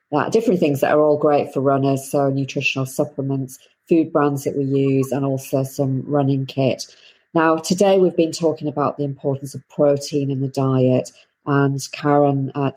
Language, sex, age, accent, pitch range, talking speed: English, female, 40-59, British, 135-145 Hz, 180 wpm